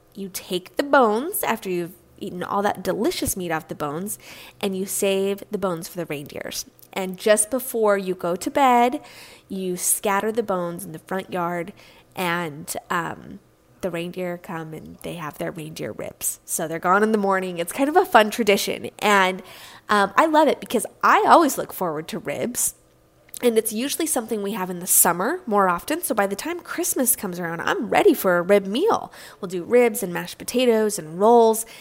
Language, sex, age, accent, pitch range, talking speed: English, female, 20-39, American, 180-240 Hz, 195 wpm